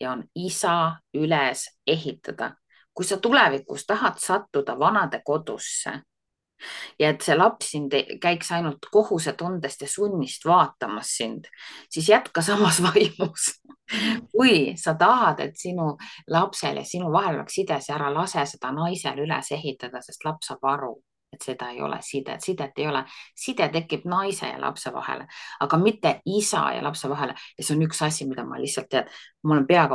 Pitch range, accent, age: 140-185 Hz, Finnish, 30-49